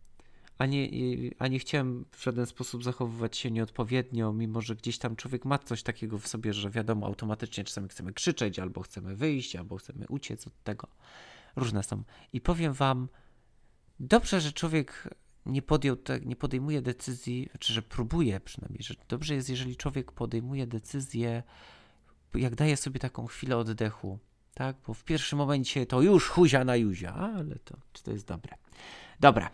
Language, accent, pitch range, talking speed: Polish, native, 110-145 Hz, 160 wpm